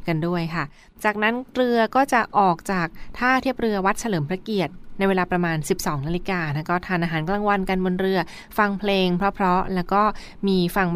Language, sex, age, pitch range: Thai, female, 20-39, 170-205 Hz